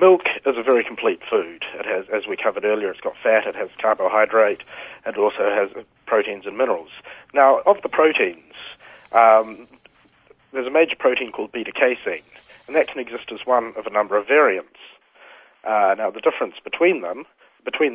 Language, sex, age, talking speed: English, male, 40-59, 180 wpm